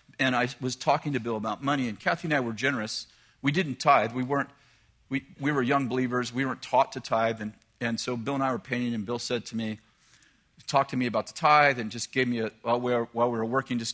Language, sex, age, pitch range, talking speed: English, male, 50-69, 120-155 Hz, 265 wpm